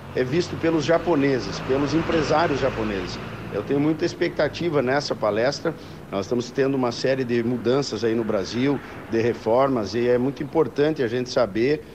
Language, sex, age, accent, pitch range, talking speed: Portuguese, male, 50-69, Brazilian, 115-140 Hz, 160 wpm